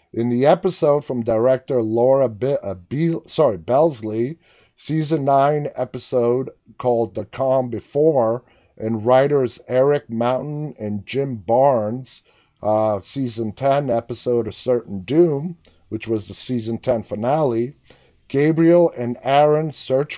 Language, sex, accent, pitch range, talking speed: English, male, American, 115-145 Hz, 125 wpm